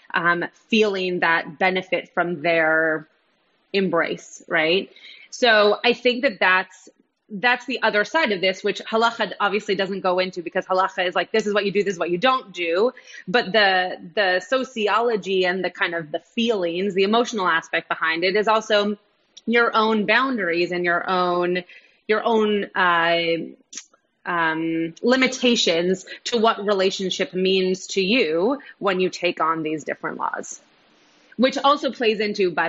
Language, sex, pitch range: English, female, 180-220 Hz